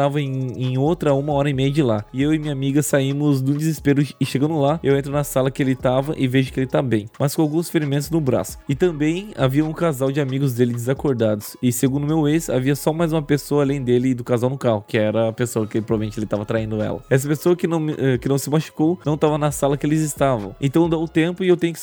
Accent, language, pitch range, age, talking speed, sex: Brazilian, Portuguese, 130-155 Hz, 20-39, 270 wpm, male